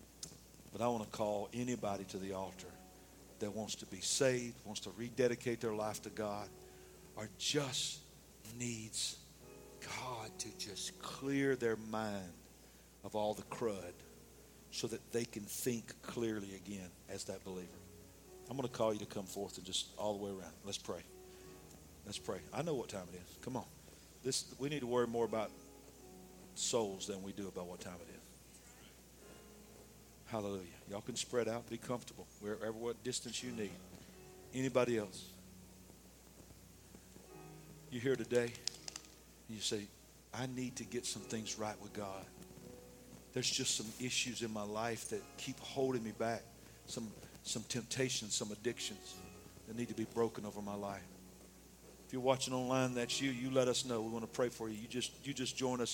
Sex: male